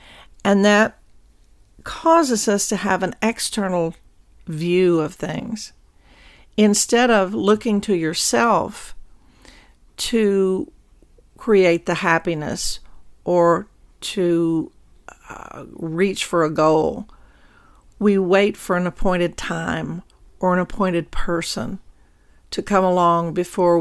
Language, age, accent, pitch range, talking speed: English, 50-69, American, 165-200 Hz, 105 wpm